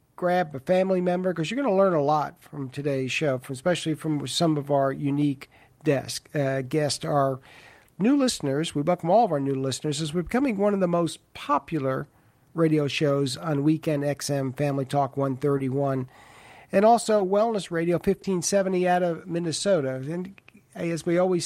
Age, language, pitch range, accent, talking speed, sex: 50-69, English, 145-180 Hz, American, 170 wpm, male